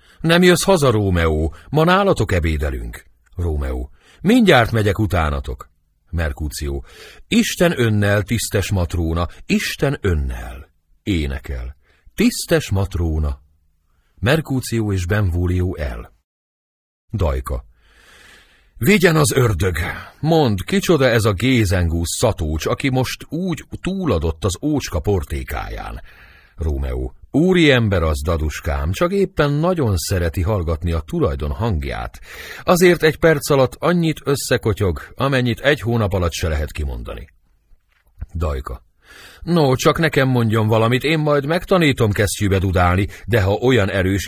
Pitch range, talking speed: 80-130 Hz, 110 wpm